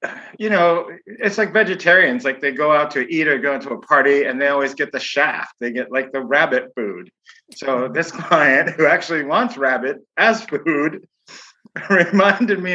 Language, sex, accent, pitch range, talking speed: English, male, American, 130-185 Hz, 185 wpm